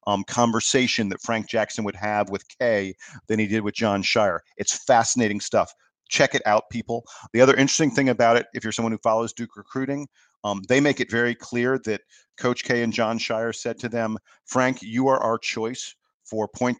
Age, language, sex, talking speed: 40-59, English, male, 205 wpm